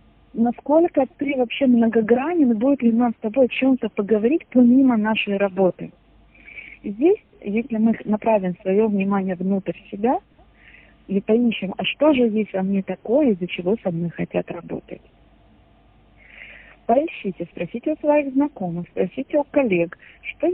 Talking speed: 135 wpm